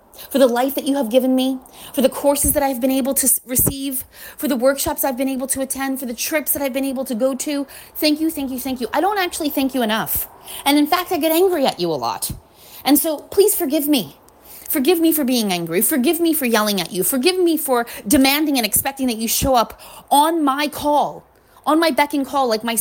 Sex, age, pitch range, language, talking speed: female, 30-49, 230-295 Hz, English, 245 wpm